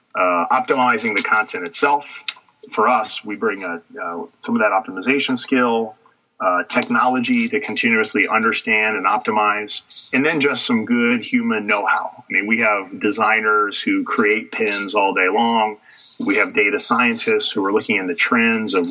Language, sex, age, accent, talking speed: English, male, 40-59, American, 160 wpm